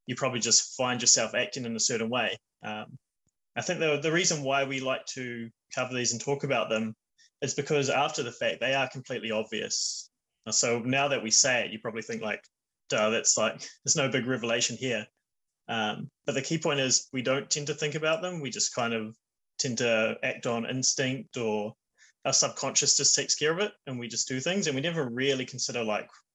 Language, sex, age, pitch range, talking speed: English, male, 20-39, 115-140 Hz, 215 wpm